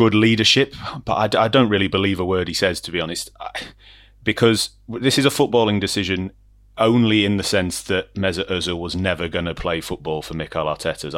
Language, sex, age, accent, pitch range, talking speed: English, male, 30-49, British, 90-110 Hz, 195 wpm